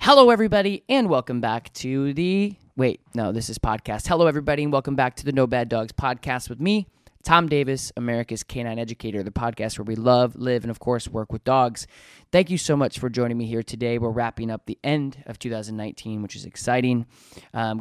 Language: English